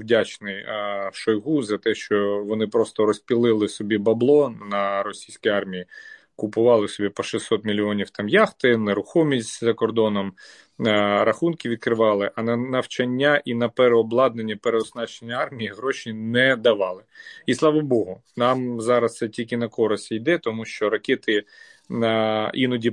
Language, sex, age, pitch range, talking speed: Ukrainian, male, 30-49, 110-135 Hz, 140 wpm